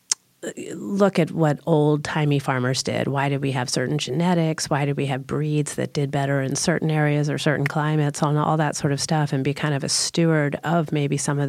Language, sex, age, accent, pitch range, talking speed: English, female, 40-59, American, 135-150 Hz, 220 wpm